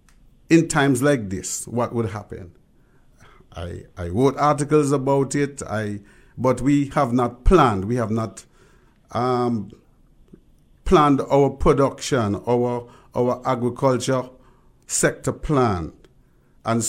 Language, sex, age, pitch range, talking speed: English, male, 50-69, 120-150 Hz, 115 wpm